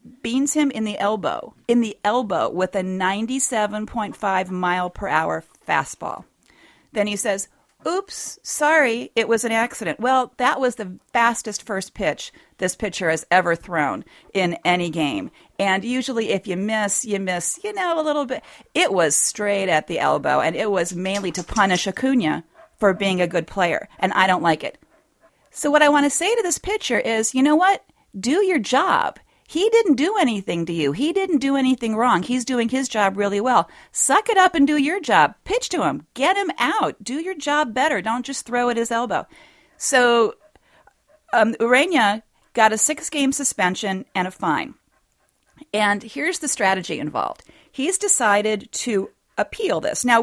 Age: 40-59